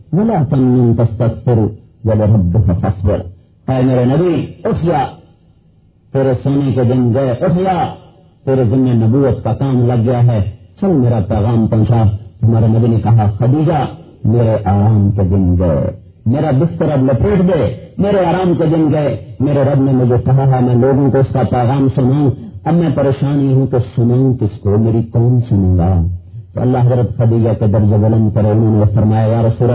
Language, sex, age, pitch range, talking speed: English, male, 50-69, 110-140 Hz, 110 wpm